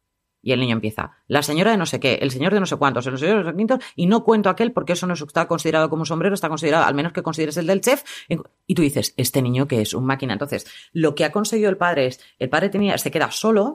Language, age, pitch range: Spanish, 30-49, 145-200 Hz